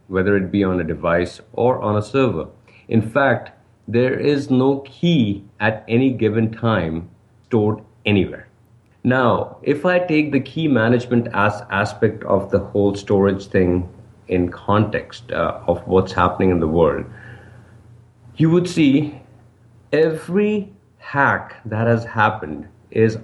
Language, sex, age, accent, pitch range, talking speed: English, male, 50-69, Indian, 95-120 Hz, 140 wpm